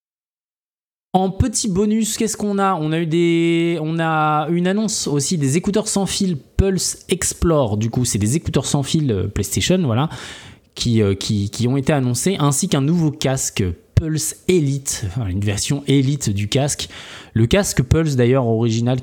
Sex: male